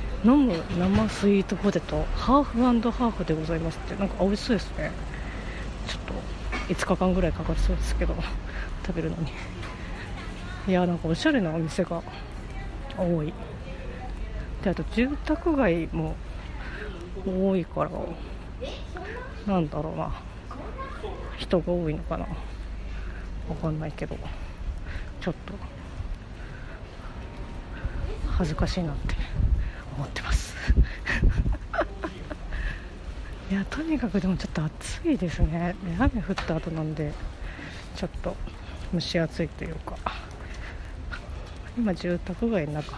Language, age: Japanese, 30-49